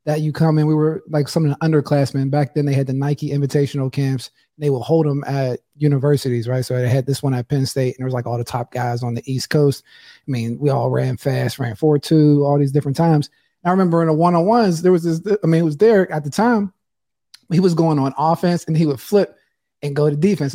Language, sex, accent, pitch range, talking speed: English, male, American, 140-185 Hz, 260 wpm